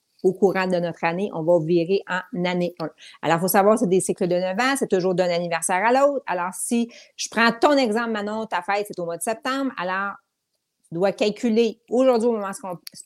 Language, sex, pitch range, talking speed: French, female, 190-250 Hz, 240 wpm